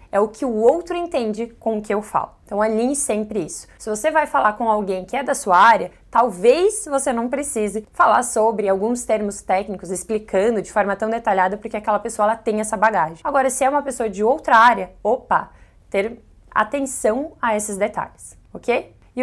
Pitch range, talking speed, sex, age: 200-260 Hz, 195 wpm, female, 20-39